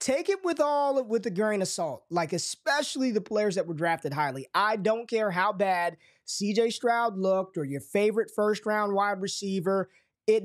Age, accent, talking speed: 20-39, American, 190 wpm